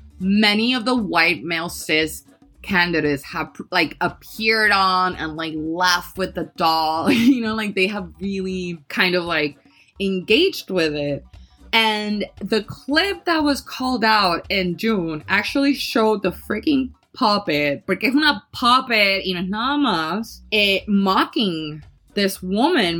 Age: 20-39